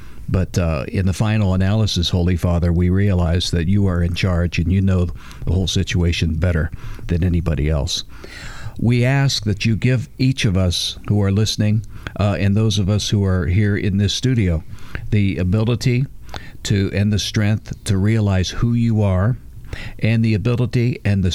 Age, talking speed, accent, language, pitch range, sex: 50-69, 175 wpm, American, English, 90-110 Hz, male